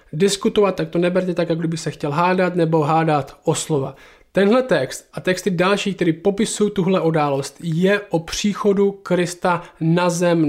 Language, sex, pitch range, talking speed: Czech, male, 165-220 Hz, 160 wpm